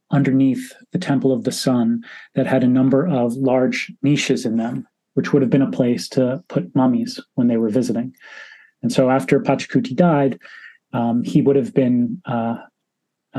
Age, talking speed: 30-49, 175 wpm